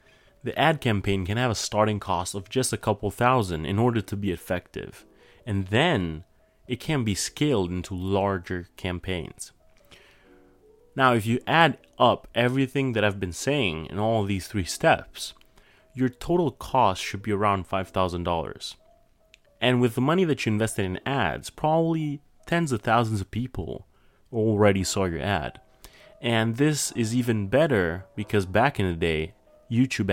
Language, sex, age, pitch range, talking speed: English, male, 30-49, 95-125 Hz, 155 wpm